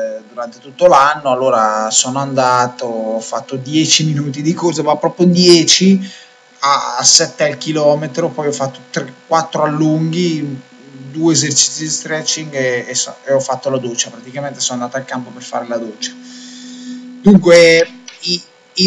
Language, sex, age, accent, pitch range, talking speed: Italian, male, 20-39, native, 130-160 Hz, 145 wpm